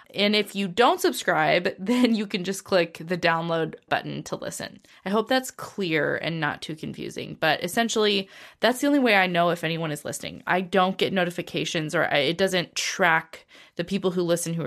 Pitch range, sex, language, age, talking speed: 165-200 Hz, female, English, 20-39, 195 wpm